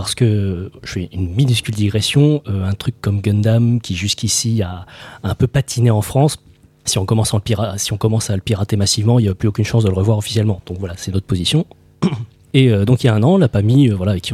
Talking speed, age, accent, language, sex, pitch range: 265 wpm, 30-49, French, French, male, 100-125 Hz